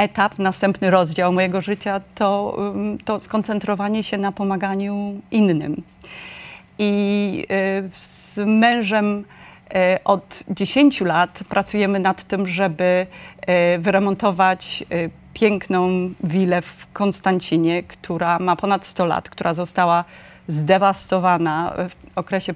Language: Polish